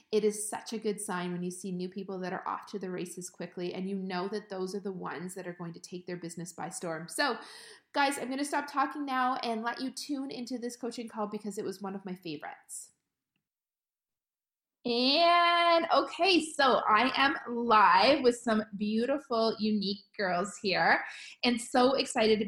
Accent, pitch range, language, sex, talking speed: American, 200-250 Hz, English, female, 200 wpm